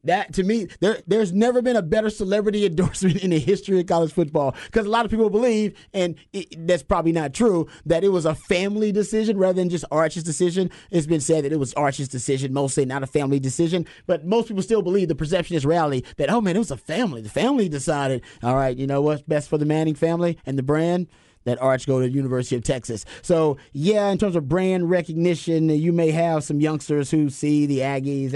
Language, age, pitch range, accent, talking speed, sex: English, 30-49, 135-175 Hz, American, 225 wpm, male